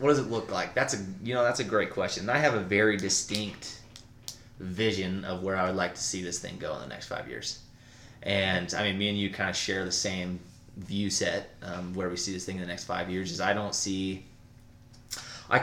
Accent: American